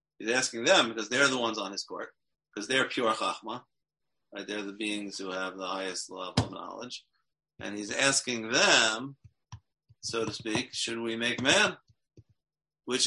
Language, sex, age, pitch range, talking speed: English, male, 40-59, 100-125 Hz, 170 wpm